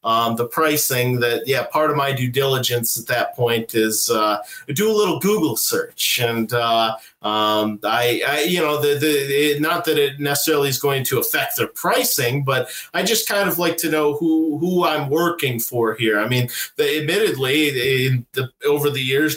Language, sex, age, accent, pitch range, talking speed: English, male, 40-59, American, 125-170 Hz, 195 wpm